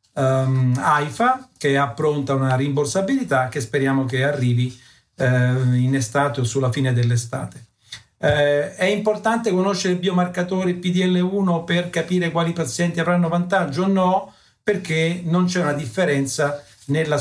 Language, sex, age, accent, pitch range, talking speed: Italian, male, 50-69, native, 135-170 Hz, 135 wpm